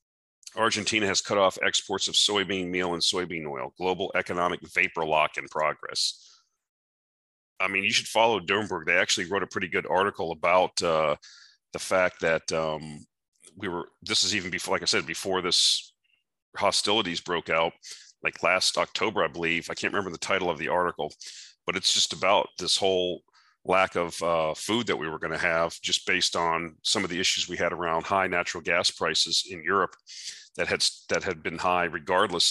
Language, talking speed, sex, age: English, 185 wpm, male, 40-59